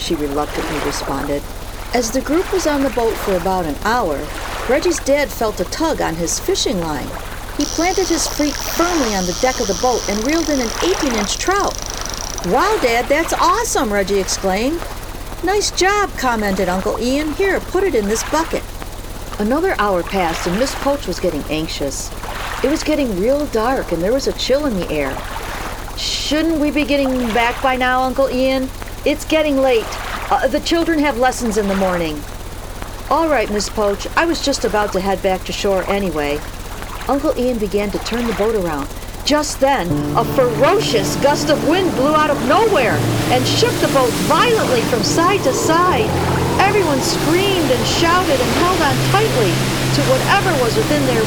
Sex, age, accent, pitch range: female, 50-69, American, 185-295 Hz